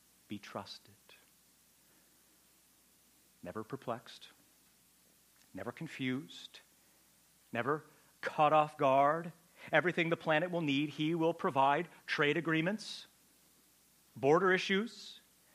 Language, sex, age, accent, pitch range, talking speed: English, male, 40-59, American, 140-200 Hz, 85 wpm